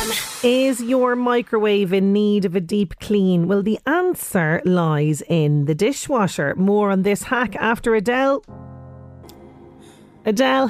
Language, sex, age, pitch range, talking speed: English, female, 30-49, 190-230 Hz, 130 wpm